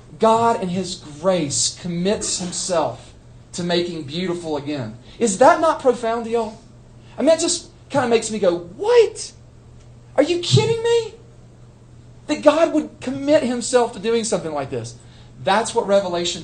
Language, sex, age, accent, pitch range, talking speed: English, male, 40-59, American, 125-205 Hz, 155 wpm